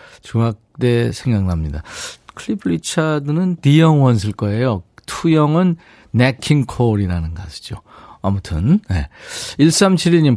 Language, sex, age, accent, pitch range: Korean, male, 40-59, native, 100-150 Hz